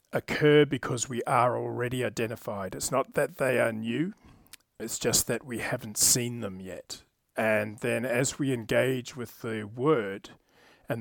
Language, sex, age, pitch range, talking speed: English, male, 40-59, 115-140 Hz, 160 wpm